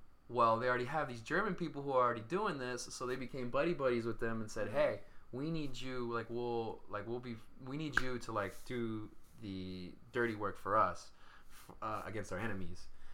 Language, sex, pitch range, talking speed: English, male, 100-120 Hz, 205 wpm